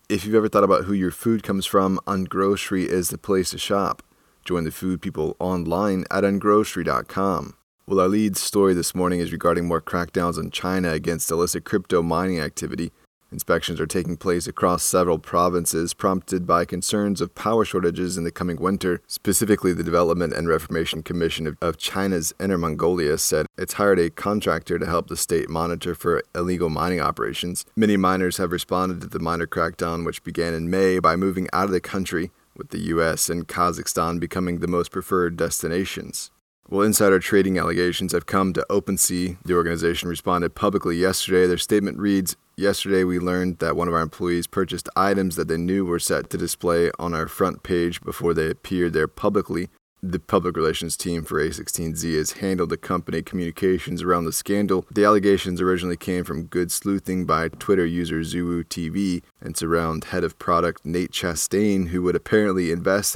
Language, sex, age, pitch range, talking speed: English, male, 30-49, 85-95 Hz, 180 wpm